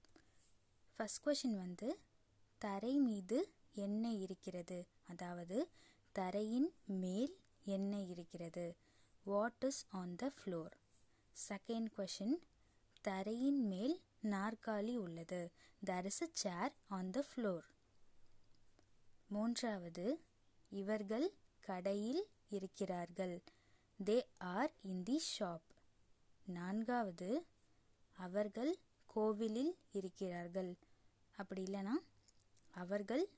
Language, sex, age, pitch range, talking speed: Tamil, female, 20-39, 180-230 Hz, 70 wpm